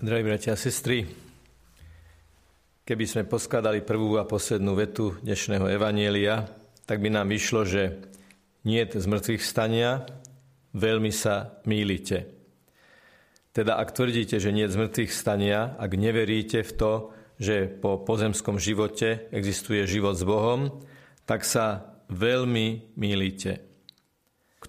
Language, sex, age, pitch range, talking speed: Slovak, male, 50-69, 105-120 Hz, 120 wpm